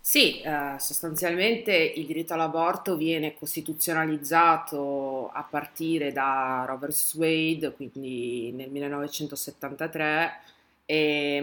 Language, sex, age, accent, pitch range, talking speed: Italian, female, 30-49, native, 140-170 Hz, 80 wpm